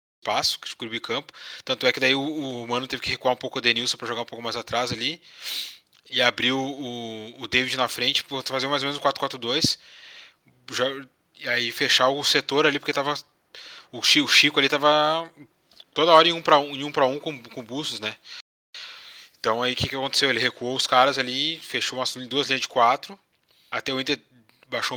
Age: 20-39